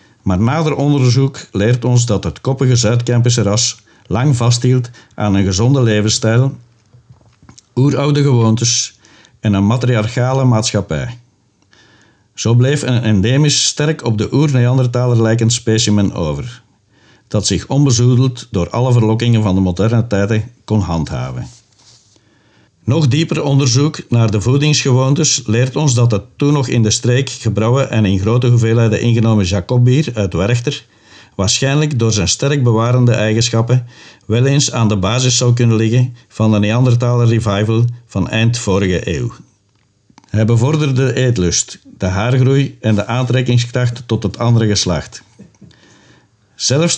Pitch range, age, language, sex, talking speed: 110-130 Hz, 60-79, Dutch, male, 135 wpm